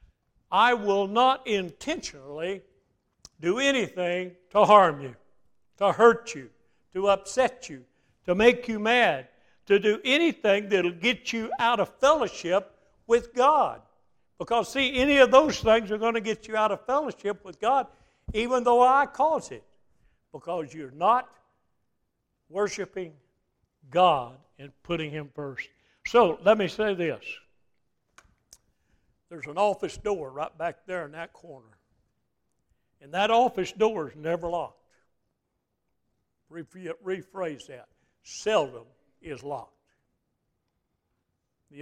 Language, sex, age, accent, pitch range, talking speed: English, male, 60-79, American, 165-230 Hz, 130 wpm